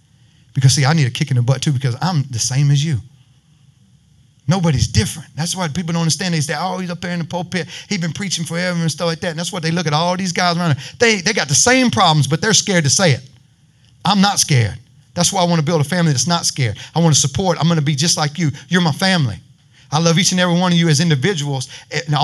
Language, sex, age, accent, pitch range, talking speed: English, male, 30-49, American, 135-175 Hz, 275 wpm